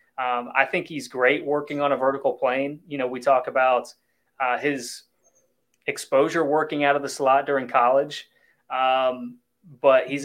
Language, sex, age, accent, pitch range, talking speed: English, male, 30-49, American, 130-150 Hz, 165 wpm